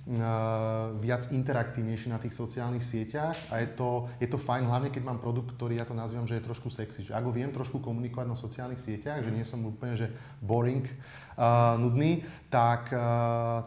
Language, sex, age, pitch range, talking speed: Slovak, male, 30-49, 115-125 Hz, 185 wpm